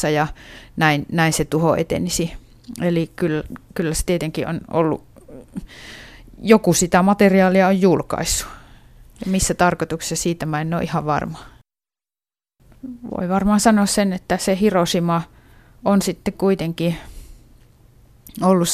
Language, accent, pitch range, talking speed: Finnish, native, 150-175 Hz, 120 wpm